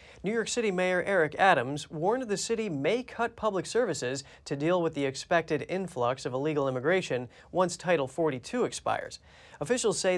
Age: 30-49